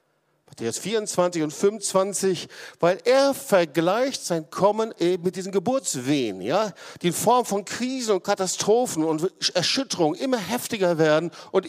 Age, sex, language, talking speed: 50-69, male, German, 145 wpm